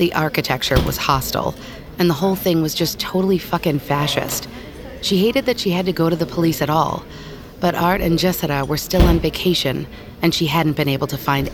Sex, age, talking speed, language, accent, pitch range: female, 40-59, 210 wpm, English, American, 140-175 Hz